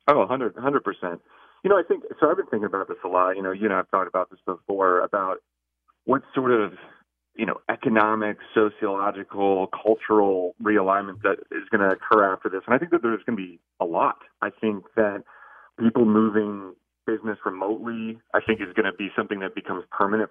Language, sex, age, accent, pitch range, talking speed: English, male, 30-49, American, 95-110 Hz, 200 wpm